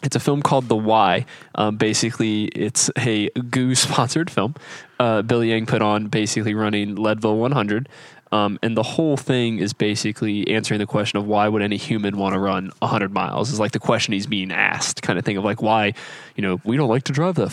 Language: English